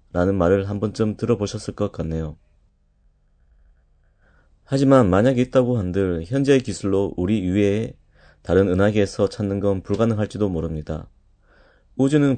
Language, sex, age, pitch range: Korean, male, 30-49, 90-115 Hz